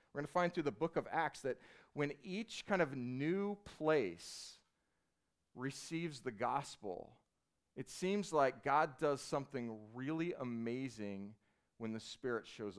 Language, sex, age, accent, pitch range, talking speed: English, male, 40-59, American, 110-140 Hz, 145 wpm